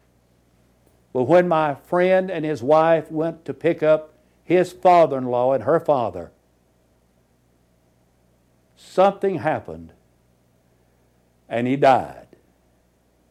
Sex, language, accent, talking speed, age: male, English, American, 95 wpm, 60-79